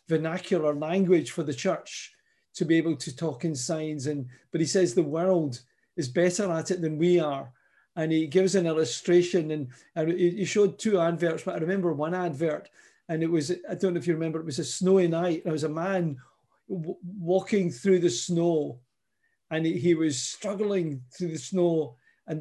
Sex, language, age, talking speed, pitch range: male, English, 40-59, 185 wpm, 155-185 Hz